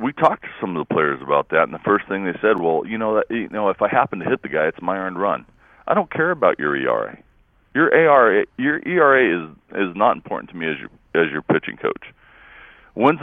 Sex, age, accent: male, 40-59, American